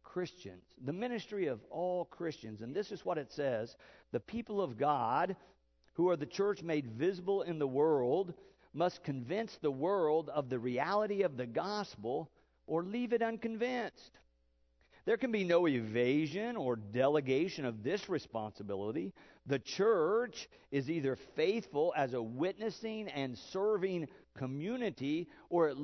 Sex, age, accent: male, 50-69, American